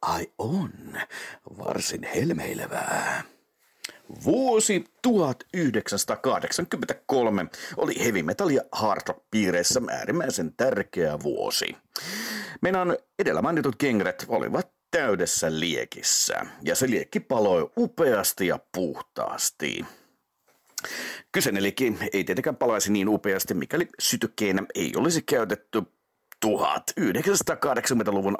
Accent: native